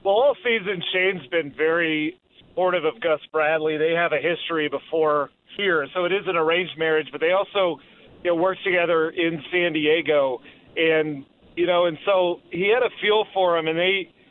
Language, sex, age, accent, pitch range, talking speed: English, male, 40-59, American, 155-185 Hz, 180 wpm